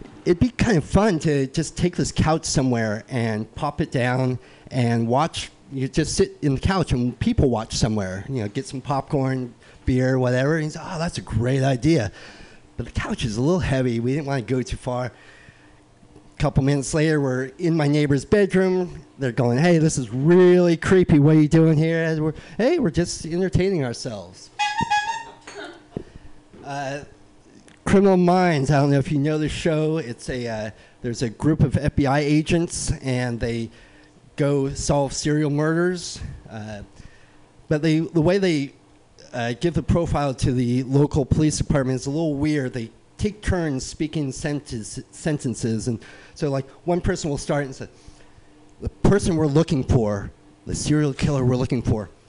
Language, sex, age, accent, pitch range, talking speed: English, male, 30-49, American, 125-160 Hz, 175 wpm